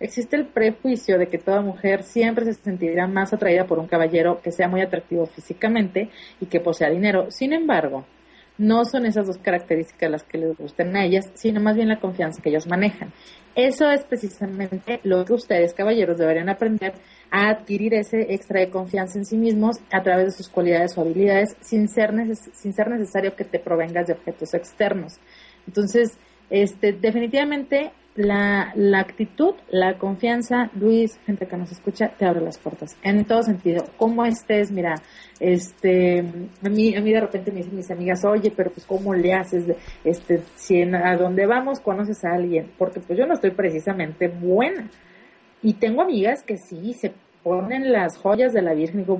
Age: 30-49